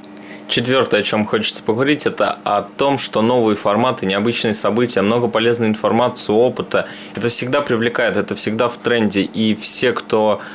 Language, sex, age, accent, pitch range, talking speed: Russian, male, 20-39, native, 100-115 Hz, 155 wpm